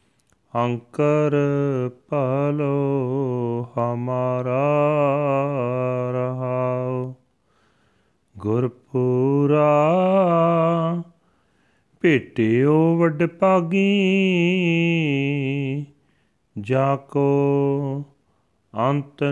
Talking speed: 35 wpm